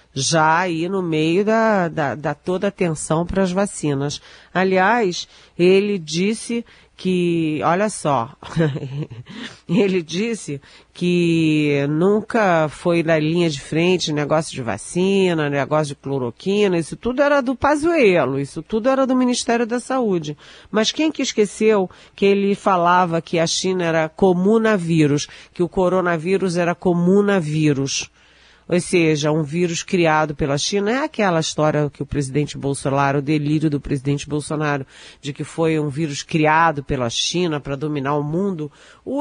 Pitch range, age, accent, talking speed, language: 150-190 Hz, 40-59, Brazilian, 145 wpm, Portuguese